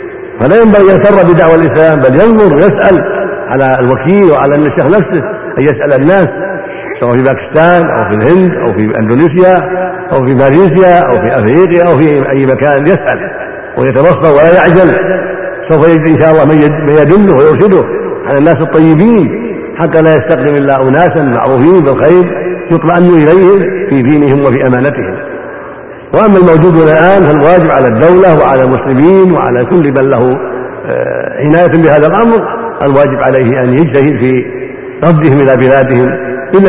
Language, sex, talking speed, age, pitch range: Arabic, male, 145 wpm, 70-89, 140-185 Hz